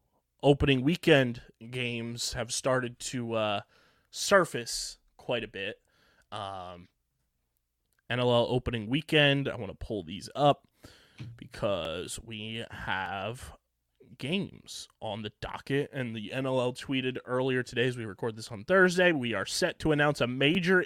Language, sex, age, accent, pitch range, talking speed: English, male, 20-39, American, 115-150 Hz, 135 wpm